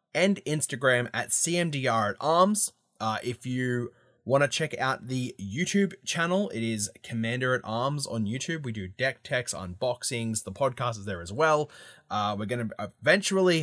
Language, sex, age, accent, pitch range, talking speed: English, male, 20-39, Australian, 120-165 Hz, 170 wpm